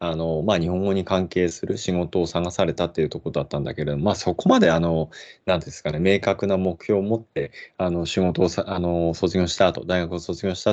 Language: Japanese